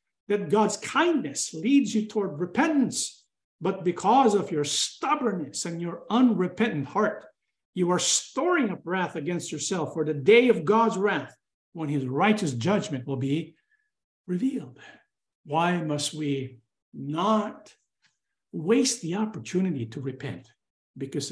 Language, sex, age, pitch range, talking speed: English, male, 50-69, 140-205 Hz, 130 wpm